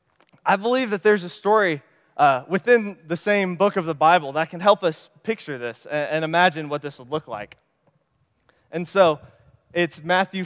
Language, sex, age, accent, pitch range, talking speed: English, male, 20-39, American, 145-185 Hz, 185 wpm